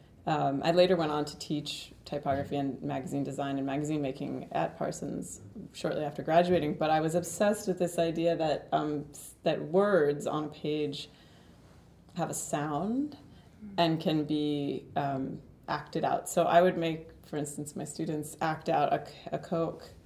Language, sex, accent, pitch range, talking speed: Finnish, female, American, 140-170 Hz, 165 wpm